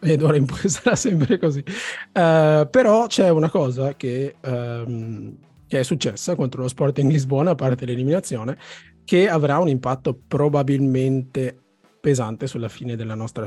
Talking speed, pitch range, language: 150 wpm, 120-150 Hz, Italian